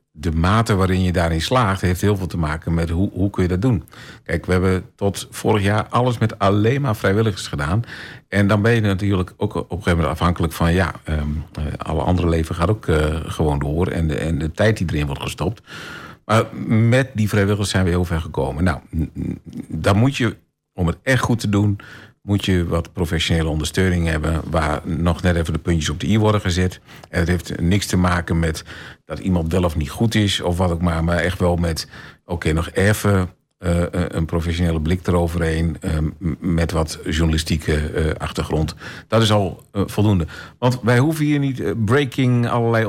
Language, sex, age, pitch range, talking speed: Dutch, male, 50-69, 80-105 Hz, 205 wpm